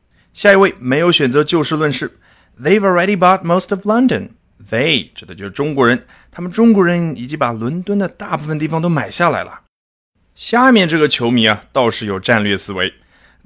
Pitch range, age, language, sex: 110-175 Hz, 30-49, Chinese, male